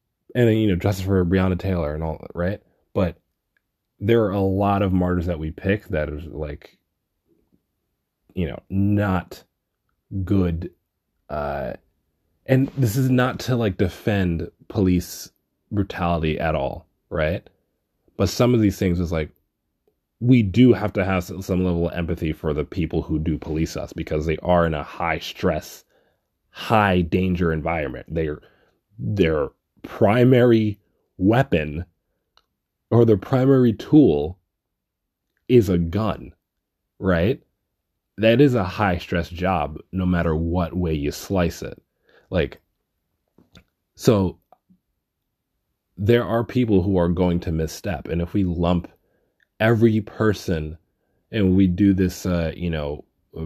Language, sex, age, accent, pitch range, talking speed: English, male, 20-39, American, 80-105 Hz, 135 wpm